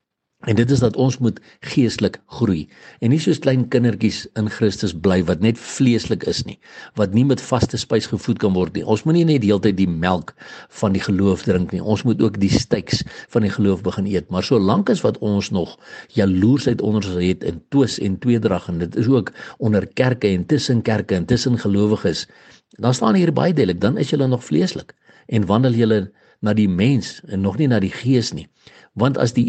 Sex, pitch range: male, 95-125 Hz